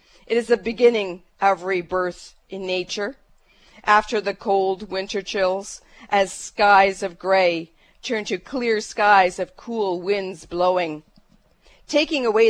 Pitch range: 185-225 Hz